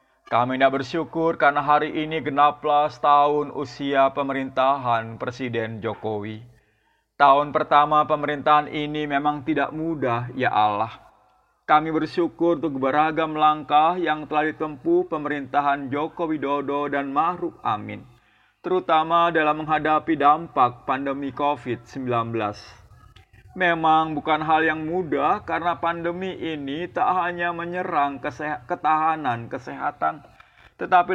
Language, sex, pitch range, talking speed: Indonesian, male, 140-175 Hz, 110 wpm